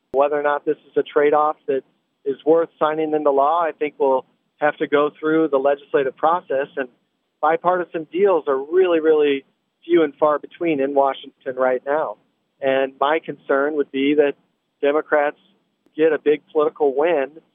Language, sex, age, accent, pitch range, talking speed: English, male, 40-59, American, 135-160 Hz, 170 wpm